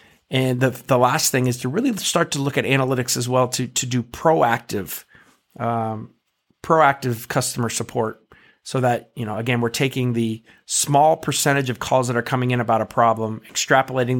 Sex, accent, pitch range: male, American, 120-140 Hz